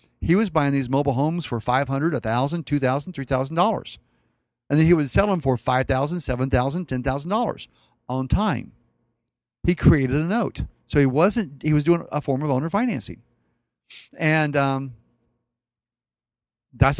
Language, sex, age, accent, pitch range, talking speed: English, male, 50-69, American, 130-165 Hz, 135 wpm